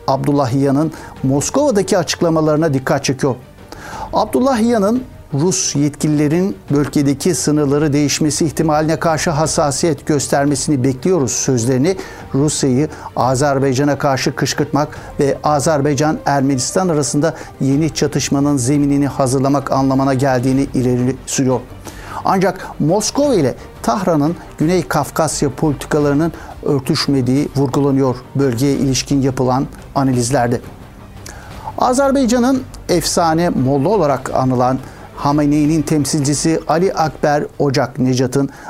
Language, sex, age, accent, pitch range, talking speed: Turkish, male, 60-79, native, 135-160 Hz, 90 wpm